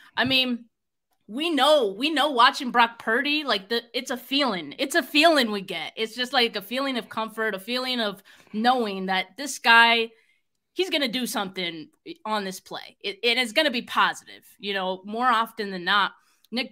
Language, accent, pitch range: English, American, 205-245 Hz